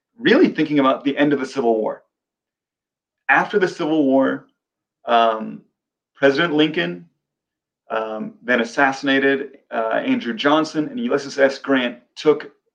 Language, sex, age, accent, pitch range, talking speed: English, male, 30-49, American, 115-155 Hz, 125 wpm